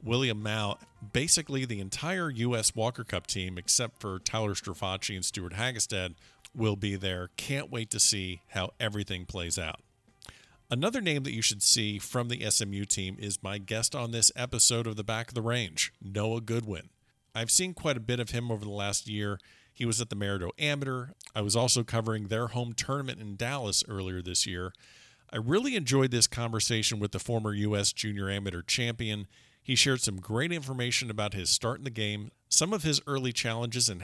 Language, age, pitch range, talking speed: English, 50-69, 100-125 Hz, 190 wpm